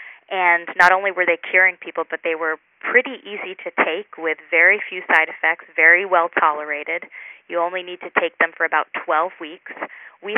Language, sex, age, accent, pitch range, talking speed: English, female, 20-39, American, 160-185 Hz, 190 wpm